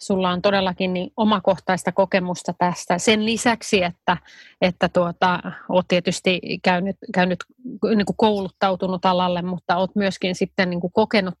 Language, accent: Finnish, native